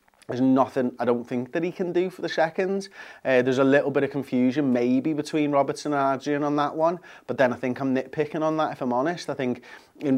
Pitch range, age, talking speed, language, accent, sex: 120-145 Hz, 30-49, 240 wpm, English, British, male